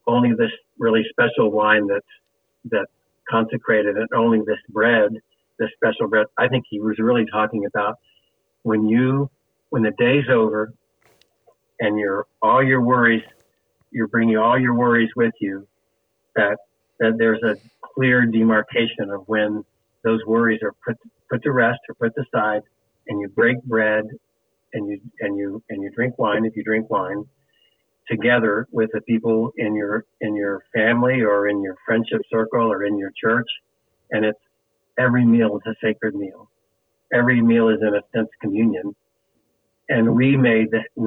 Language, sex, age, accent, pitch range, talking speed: English, male, 50-69, American, 105-115 Hz, 160 wpm